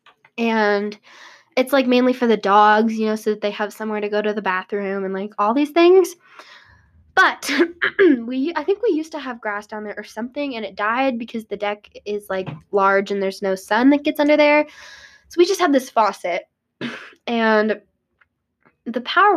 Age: 10-29